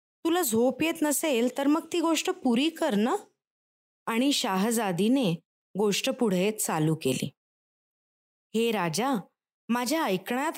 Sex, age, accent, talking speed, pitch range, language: female, 20-39, native, 120 wpm, 200-270 Hz, Marathi